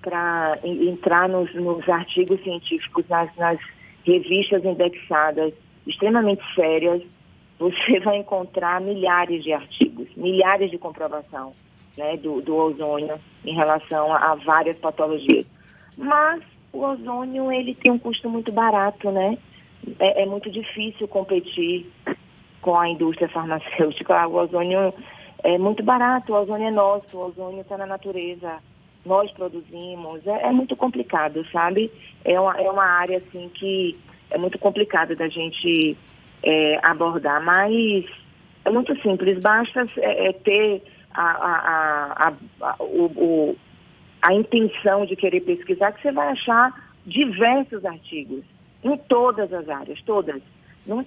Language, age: Portuguese, 20-39